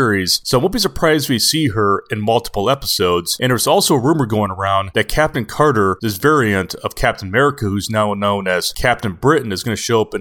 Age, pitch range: 30-49, 105-145 Hz